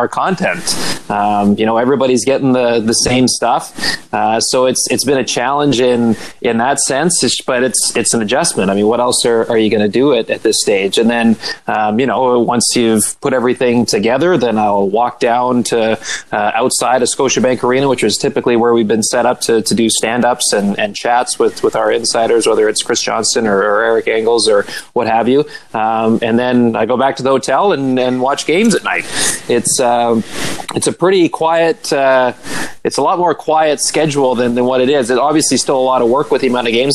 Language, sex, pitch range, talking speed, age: English, male, 115-135 Hz, 225 wpm, 20-39